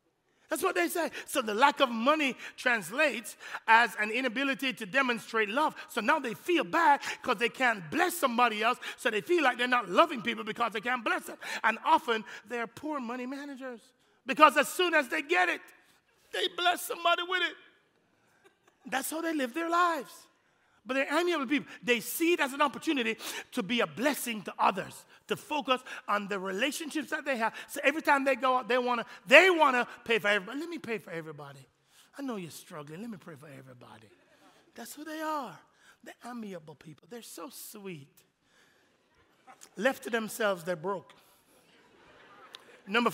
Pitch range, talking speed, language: 225-310 Hz, 185 wpm, English